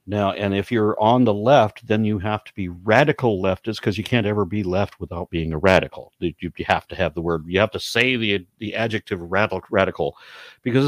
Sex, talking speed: male, 220 wpm